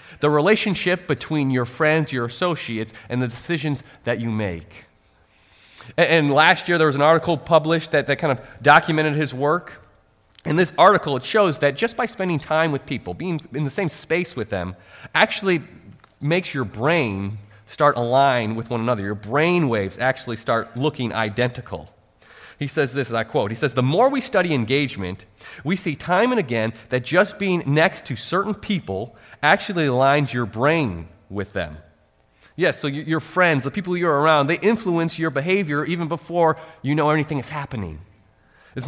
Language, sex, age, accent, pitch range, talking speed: English, male, 30-49, American, 115-170 Hz, 175 wpm